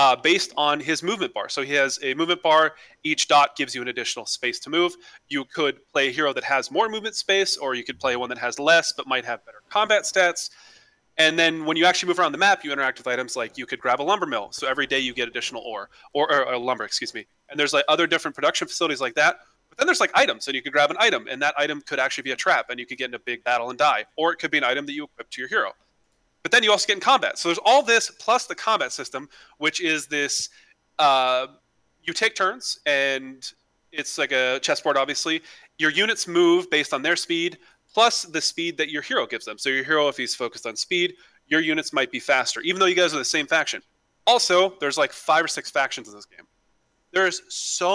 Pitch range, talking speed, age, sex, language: 135-195 Hz, 255 wpm, 30-49, male, English